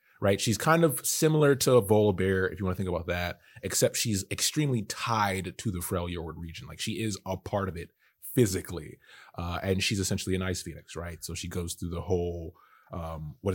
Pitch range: 85-110 Hz